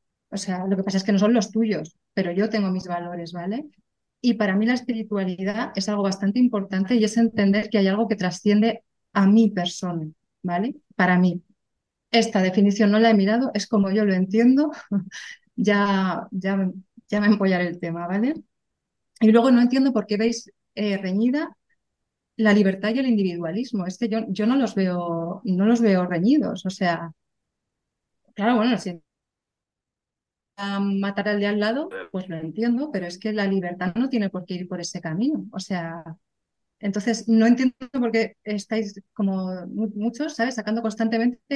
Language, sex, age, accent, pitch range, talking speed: Spanish, female, 30-49, Spanish, 190-230 Hz, 180 wpm